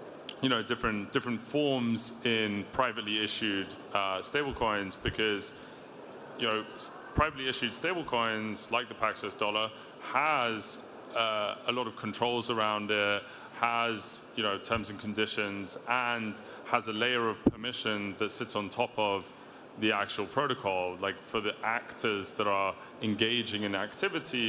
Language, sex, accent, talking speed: English, male, British, 145 wpm